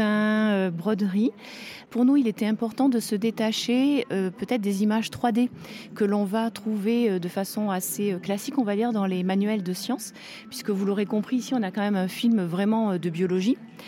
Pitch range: 195-235 Hz